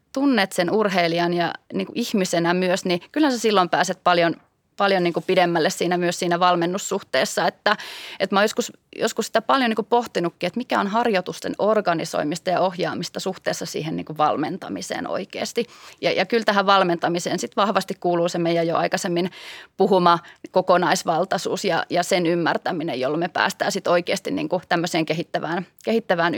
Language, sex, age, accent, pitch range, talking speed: Finnish, female, 30-49, native, 170-200 Hz, 165 wpm